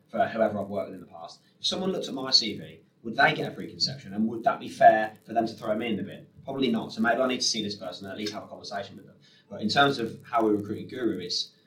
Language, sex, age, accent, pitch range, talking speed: English, male, 20-39, British, 100-110 Hz, 310 wpm